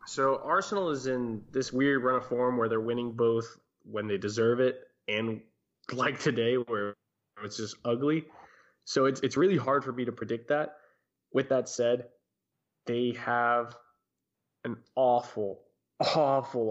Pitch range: 115-135 Hz